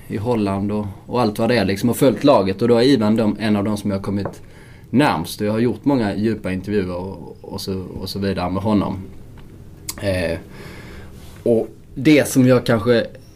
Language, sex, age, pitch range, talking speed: Swedish, male, 20-39, 95-115 Hz, 200 wpm